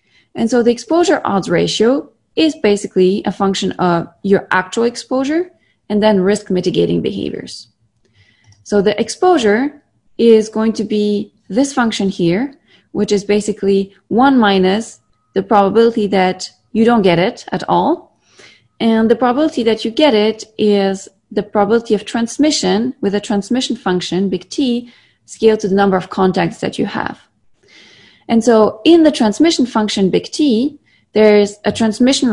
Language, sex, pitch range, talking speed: English, female, 190-235 Hz, 150 wpm